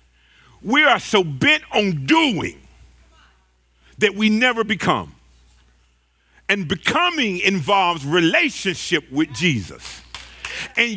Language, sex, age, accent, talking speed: English, male, 50-69, American, 95 wpm